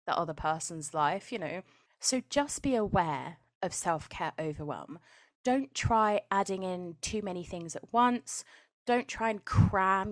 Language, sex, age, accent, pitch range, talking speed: English, female, 20-39, British, 165-215 Hz, 155 wpm